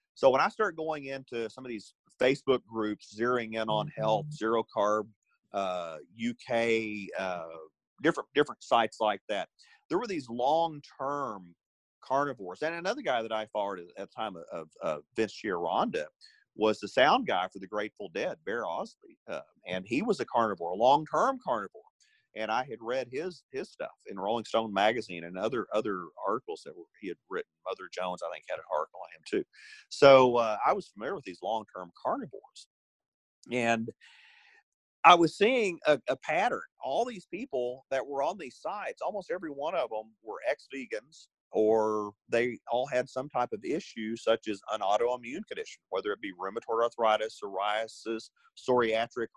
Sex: male